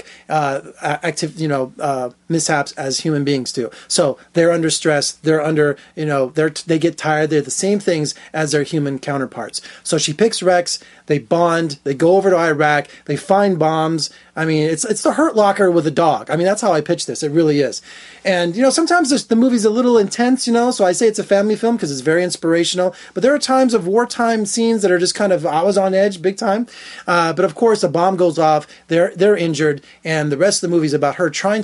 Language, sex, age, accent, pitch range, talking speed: English, male, 30-49, American, 155-205 Hz, 235 wpm